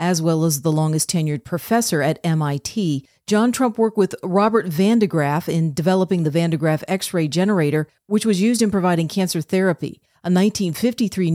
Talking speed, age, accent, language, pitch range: 165 wpm, 40-59, American, English, 160-195 Hz